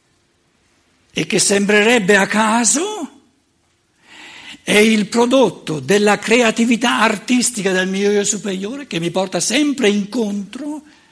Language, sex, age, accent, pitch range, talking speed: Italian, male, 60-79, native, 165-240 Hz, 110 wpm